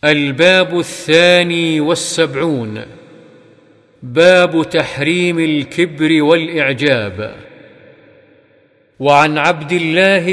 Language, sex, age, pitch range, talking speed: Arabic, male, 50-69, 150-175 Hz, 60 wpm